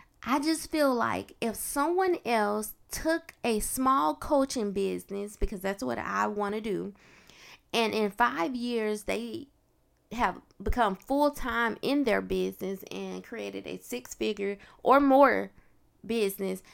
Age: 20-39